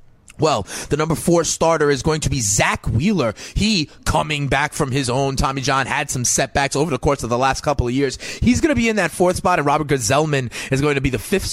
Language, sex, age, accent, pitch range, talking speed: English, male, 30-49, American, 135-165 Hz, 250 wpm